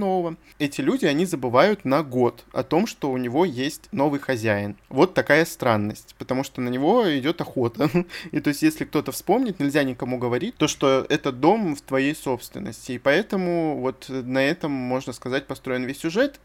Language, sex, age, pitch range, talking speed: Russian, male, 20-39, 125-145 Hz, 180 wpm